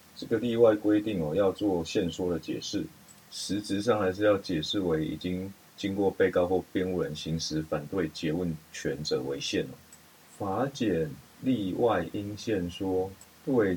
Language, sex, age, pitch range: Chinese, male, 30-49, 80-100 Hz